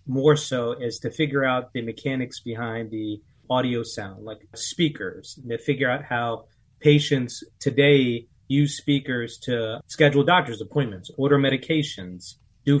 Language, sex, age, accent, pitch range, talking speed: English, male, 30-49, American, 115-140 Hz, 135 wpm